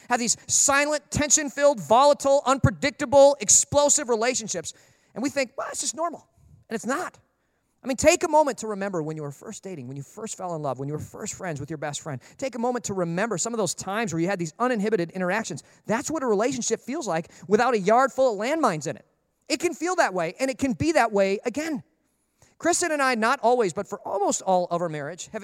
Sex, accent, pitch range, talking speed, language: male, American, 170-255 Hz, 235 wpm, English